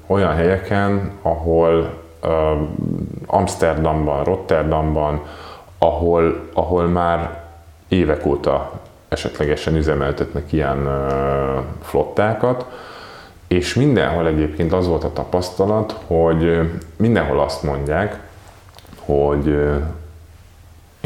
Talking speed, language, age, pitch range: 85 wpm, Hungarian, 30-49, 75-90 Hz